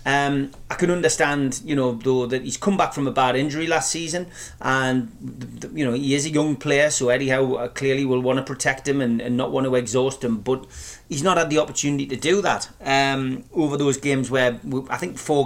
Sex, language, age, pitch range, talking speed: male, English, 30-49, 125-155 Hz, 220 wpm